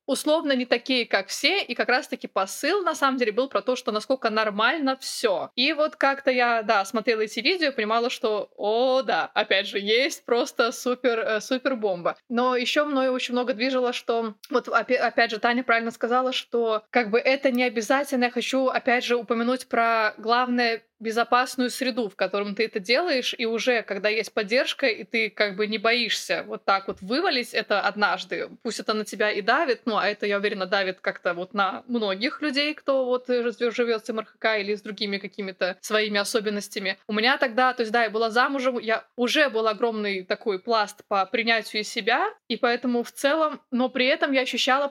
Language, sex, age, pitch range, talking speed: Russian, female, 20-39, 215-255 Hz, 190 wpm